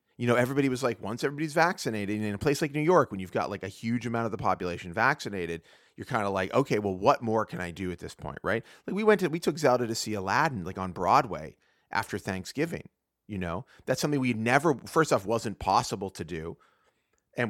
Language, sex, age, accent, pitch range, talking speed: English, male, 30-49, American, 100-140 Hz, 235 wpm